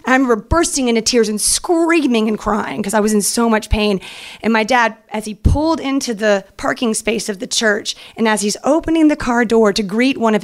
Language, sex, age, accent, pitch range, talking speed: English, female, 30-49, American, 210-245 Hz, 230 wpm